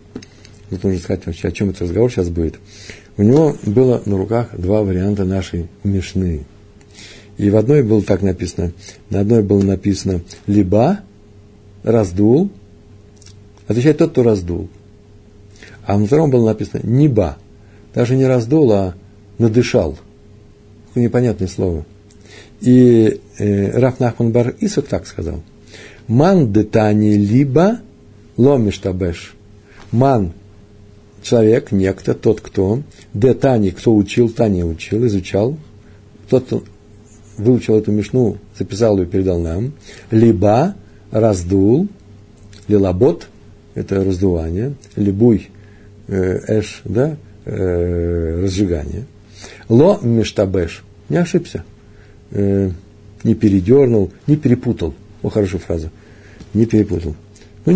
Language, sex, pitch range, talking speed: Russian, male, 100-115 Hz, 110 wpm